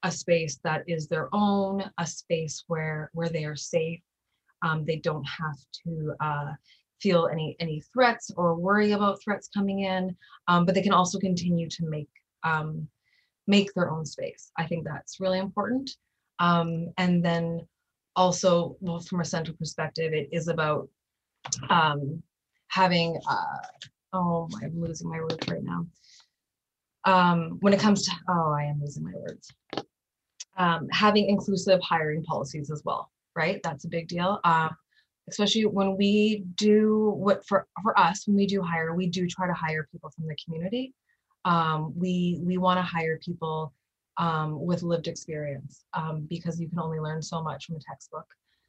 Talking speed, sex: 170 wpm, female